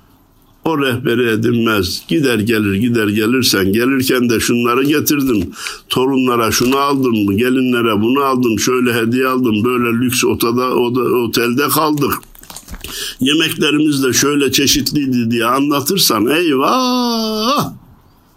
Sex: male